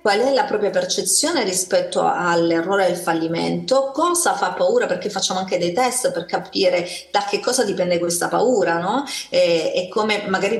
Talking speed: 175 wpm